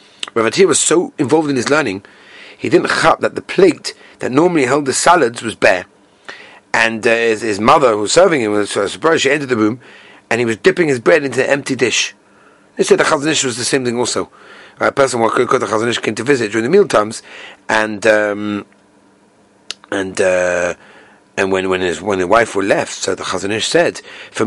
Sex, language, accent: male, English, British